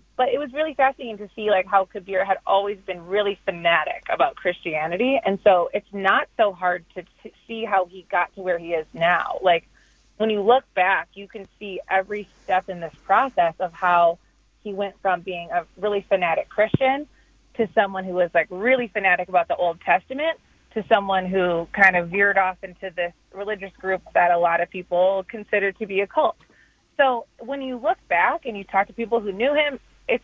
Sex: female